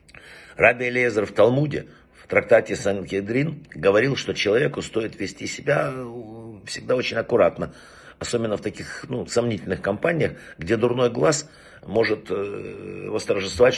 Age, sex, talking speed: 50-69, male, 115 wpm